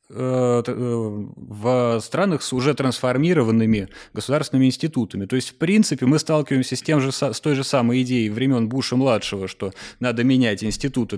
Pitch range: 115-145 Hz